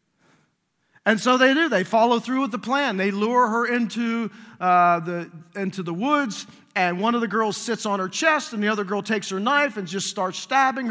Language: English